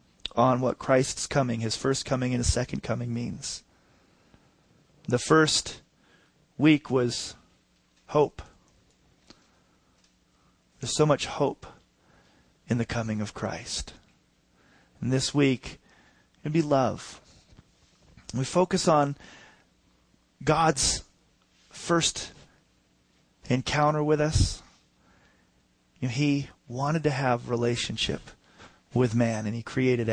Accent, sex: American, male